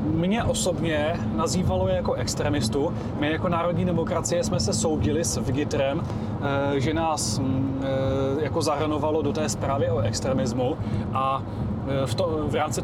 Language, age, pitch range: Czech, 30-49, 110-155 Hz